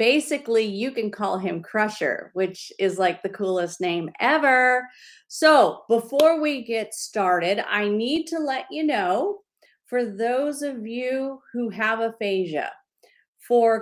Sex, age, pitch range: female, 40-59, 200-260 Hz